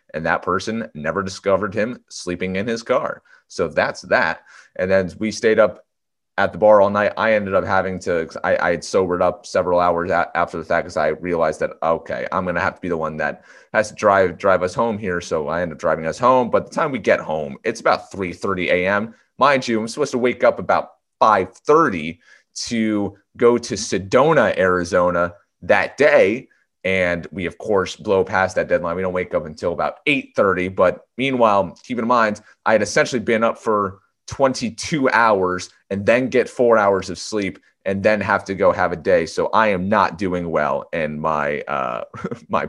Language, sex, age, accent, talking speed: English, male, 30-49, American, 205 wpm